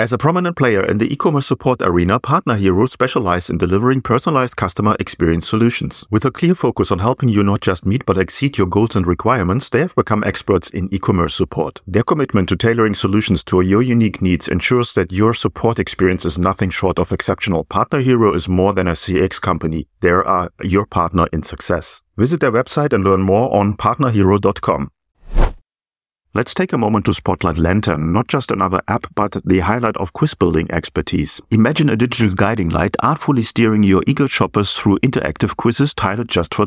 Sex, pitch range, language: male, 95-120 Hz, English